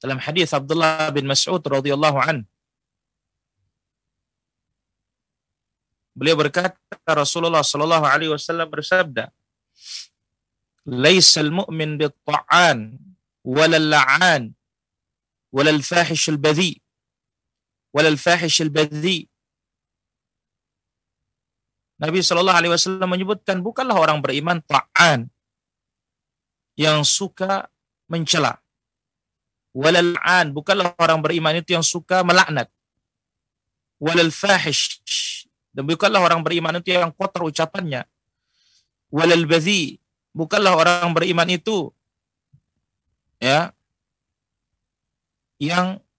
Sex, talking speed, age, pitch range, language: male, 80 wpm, 40-59, 135-175 Hz, Indonesian